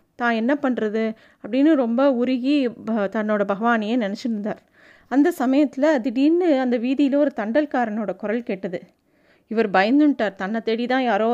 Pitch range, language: 220-275 Hz, Tamil